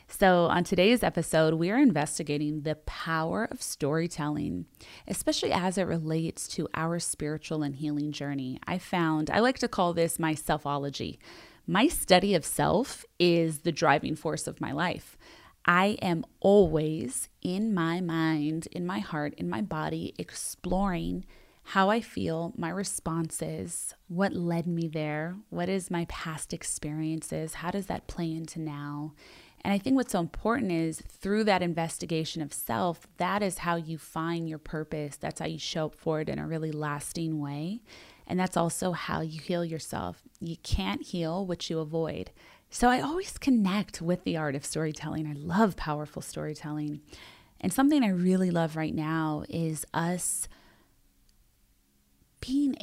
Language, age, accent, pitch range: English, 20-39, American, 155-180 Hz